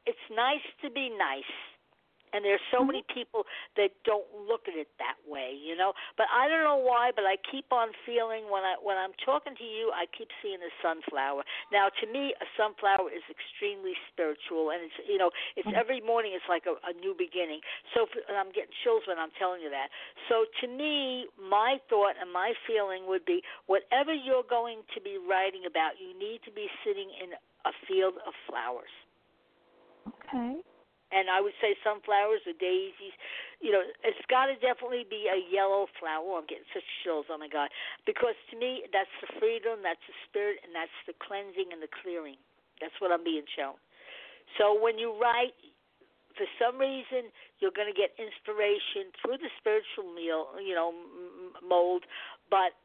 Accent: American